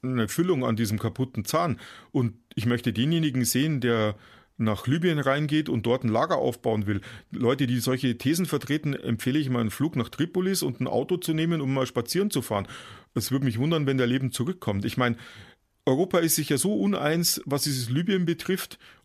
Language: German